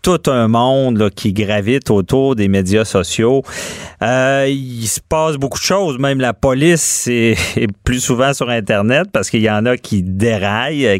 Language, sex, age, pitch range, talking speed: French, male, 40-59, 105-140 Hz, 180 wpm